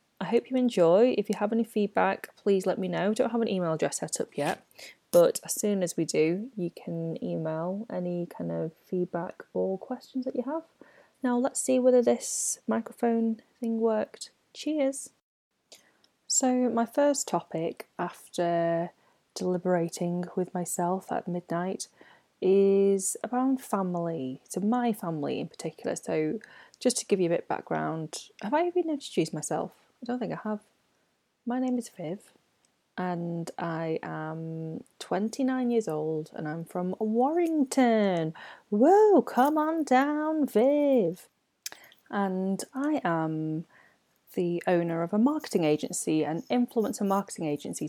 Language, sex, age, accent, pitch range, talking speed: English, female, 20-39, British, 170-240 Hz, 150 wpm